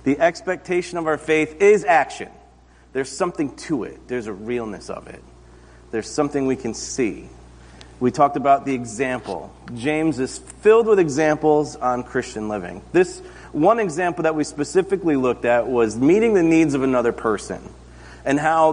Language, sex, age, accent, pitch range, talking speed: English, male, 30-49, American, 115-190 Hz, 165 wpm